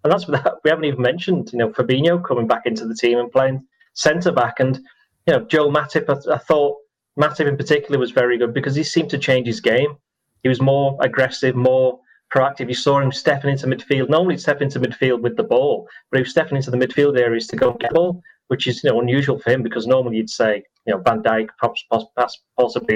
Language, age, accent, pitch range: English, 30-49, British, 125-150 Hz